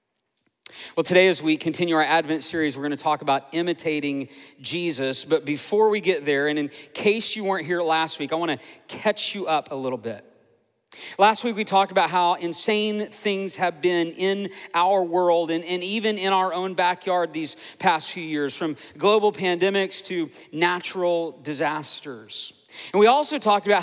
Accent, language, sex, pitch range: American, English, male, 175-235 Hz